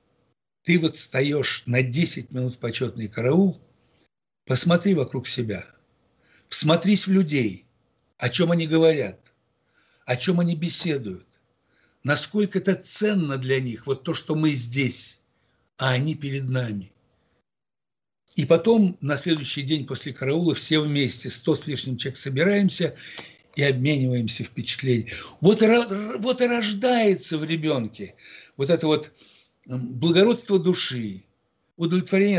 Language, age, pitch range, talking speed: Russian, 60-79, 130-175 Hz, 125 wpm